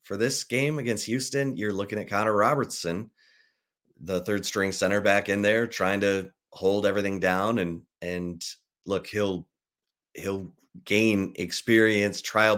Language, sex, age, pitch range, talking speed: English, male, 30-49, 85-100 Hz, 145 wpm